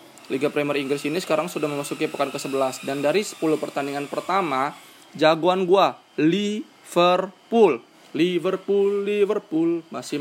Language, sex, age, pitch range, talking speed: Indonesian, male, 20-39, 140-190 Hz, 120 wpm